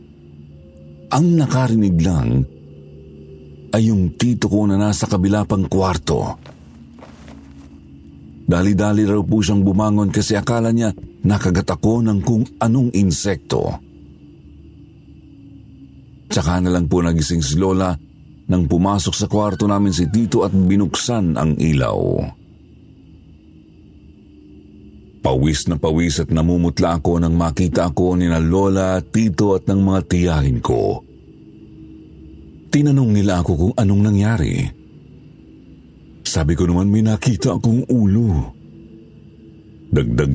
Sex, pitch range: male, 75-105 Hz